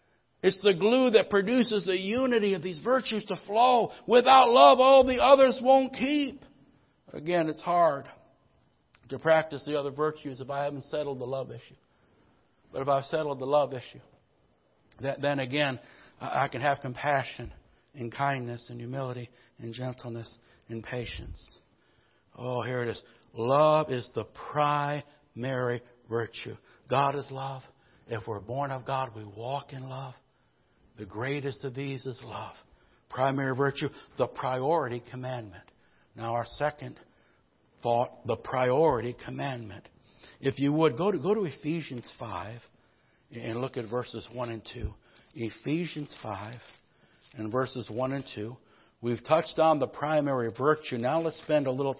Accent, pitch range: American, 120-150 Hz